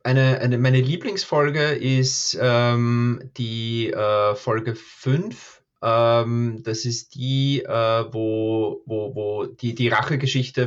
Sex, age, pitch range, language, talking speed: male, 30-49, 115-130 Hz, German, 120 wpm